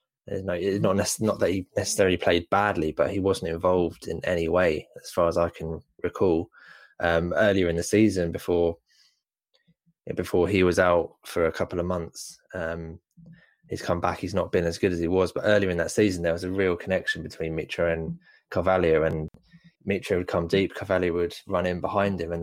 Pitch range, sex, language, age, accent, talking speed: 85-95 Hz, male, English, 20-39, British, 195 wpm